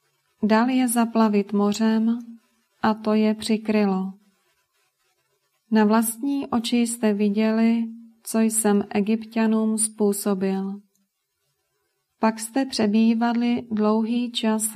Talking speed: 90 wpm